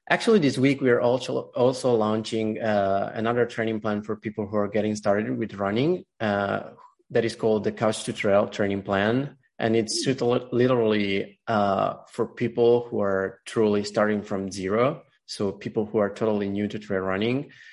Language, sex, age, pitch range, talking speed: English, male, 30-49, 105-115 Hz, 175 wpm